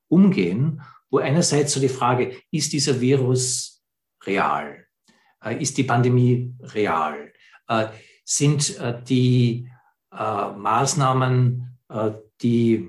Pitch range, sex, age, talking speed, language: 110-135 Hz, male, 60-79, 85 wpm, English